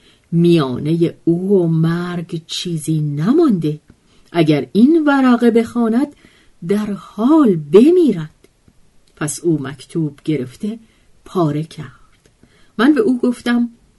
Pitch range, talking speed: 155-230 Hz, 100 wpm